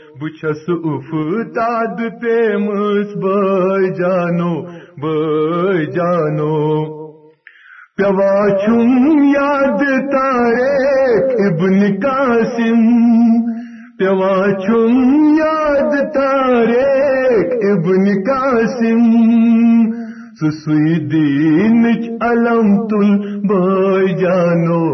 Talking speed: 60 wpm